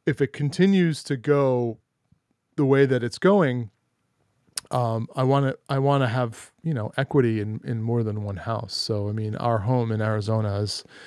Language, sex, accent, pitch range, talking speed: English, male, American, 110-135 Hz, 190 wpm